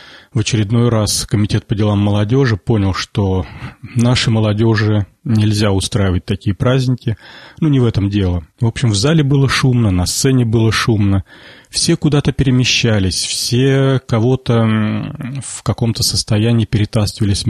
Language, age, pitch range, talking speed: Russian, 30-49, 105-125 Hz, 135 wpm